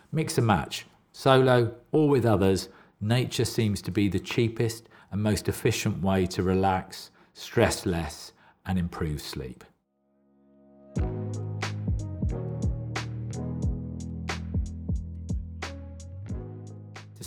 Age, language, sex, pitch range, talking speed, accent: 40-59, English, male, 90-120 Hz, 85 wpm, British